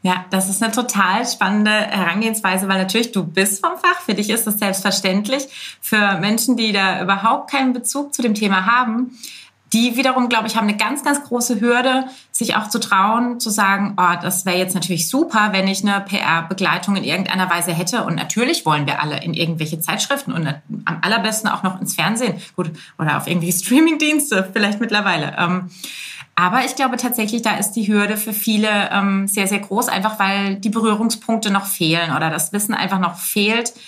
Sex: female